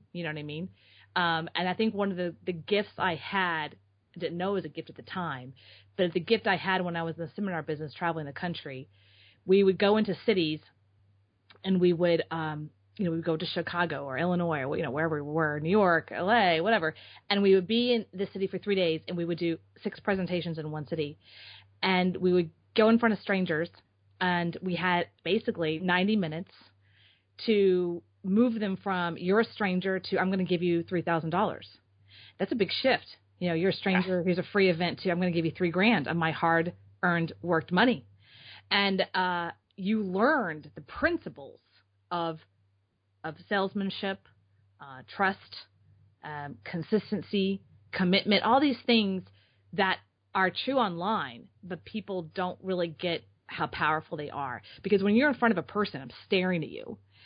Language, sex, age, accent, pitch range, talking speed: English, female, 30-49, American, 145-190 Hz, 195 wpm